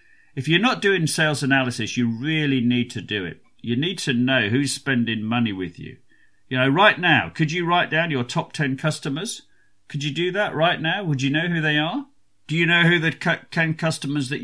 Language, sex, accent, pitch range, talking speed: English, male, British, 120-155 Hz, 220 wpm